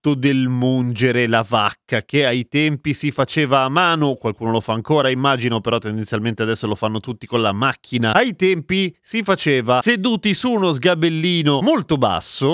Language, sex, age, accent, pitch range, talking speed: Italian, male, 30-49, native, 120-170 Hz, 165 wpm